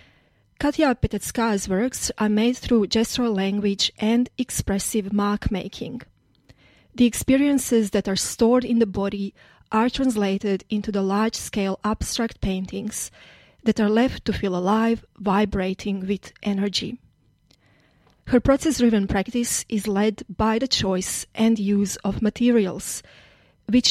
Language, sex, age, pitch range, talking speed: English, female, 30-49, 195-240 Hz, 120 wpm